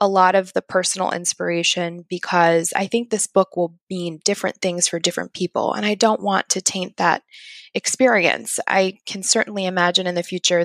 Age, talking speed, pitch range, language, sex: 20-39, 185 wpm, 175-195 Hz, English, female